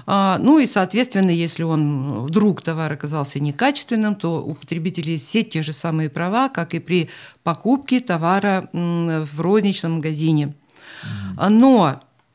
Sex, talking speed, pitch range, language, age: female, 125 wpm, 165-205 Hz, Russian, 50-69